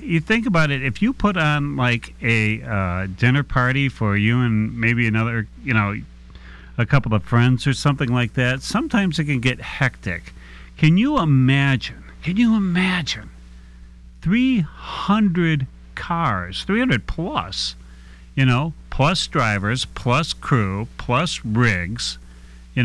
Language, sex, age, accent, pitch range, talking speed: English, male, 40-59, American, 105-150 Hz, 135 wpm